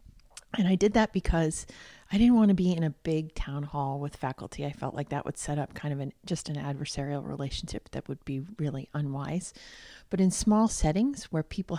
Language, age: English, 30-49